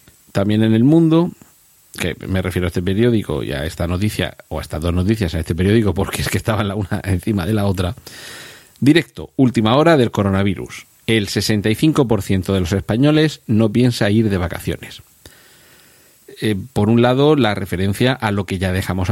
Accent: Spanish